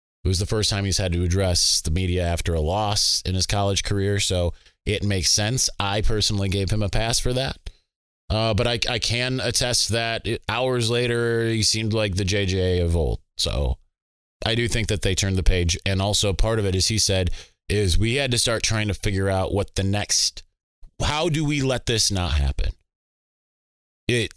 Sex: male